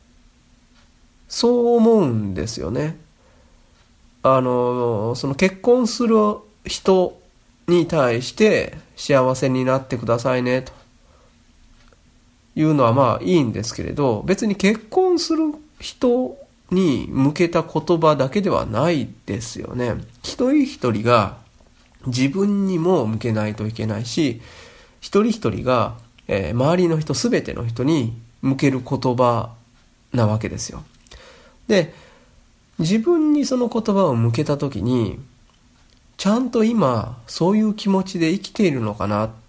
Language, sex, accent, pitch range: Japanese, male, native, 115-185 Hz